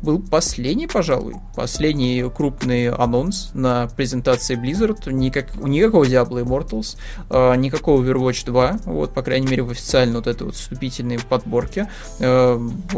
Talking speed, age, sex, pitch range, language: 130 wpm, 20-39, male, 120-140 Hz, Russian